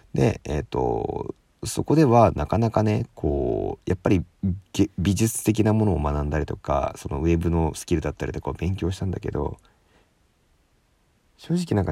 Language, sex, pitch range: Japanese, male, 80-95 Hz